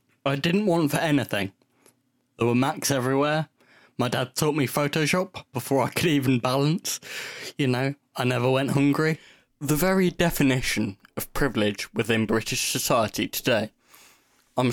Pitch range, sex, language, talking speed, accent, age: 120-145 Hz, male, English, 145 wpm, British, 10-29